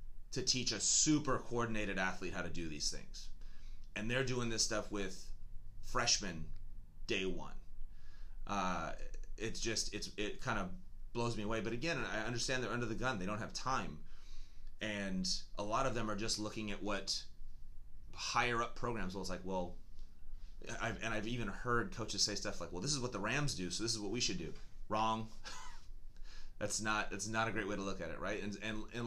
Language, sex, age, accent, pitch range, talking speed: English, male, 30-49, American, 90-115 Hz, 200 wpm